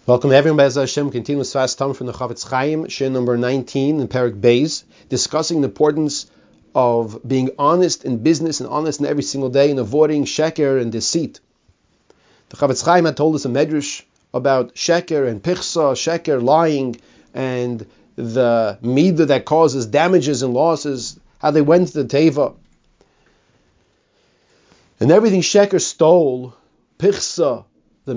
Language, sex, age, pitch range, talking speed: English, male, 40-59, 125-155 Hz, 150 wpm